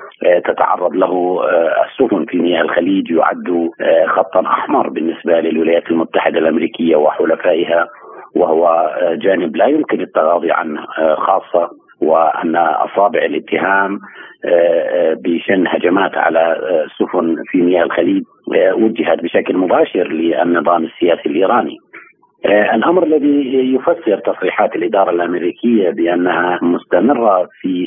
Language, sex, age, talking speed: Arabic, male, 50-69, 100 wpm